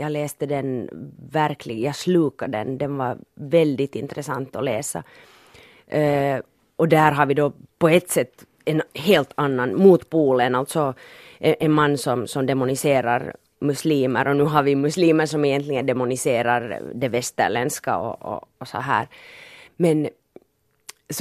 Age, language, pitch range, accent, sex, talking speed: 30-49, Swedish, 140-190 Hz, Finnish, female, 140 wpm